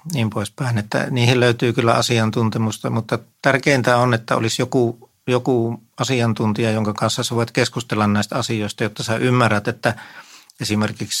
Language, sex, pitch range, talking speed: Finnish, male, 105-125 Hz, 145 wpm